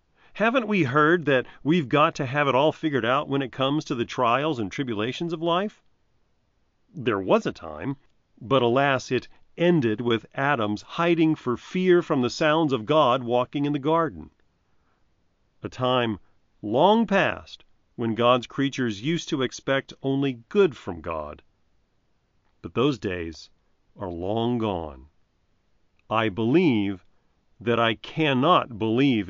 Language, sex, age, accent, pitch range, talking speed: English, male, 40-59, American, 110-160 Hz, 145 wpm